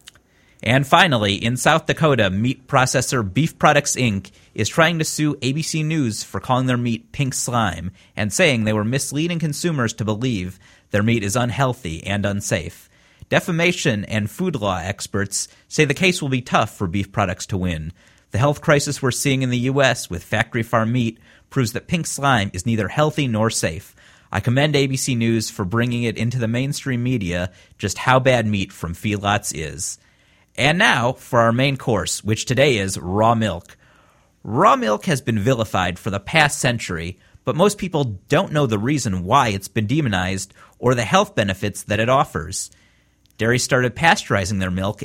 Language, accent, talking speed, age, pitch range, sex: English, American, 175 wpm, 30-49, 100-140 Hz, male